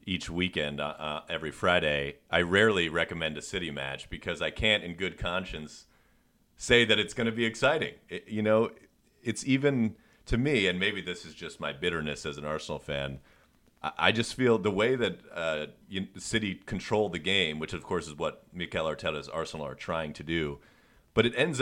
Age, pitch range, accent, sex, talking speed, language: 30-49, 75-105 Hz, American, male, 195 wpm, English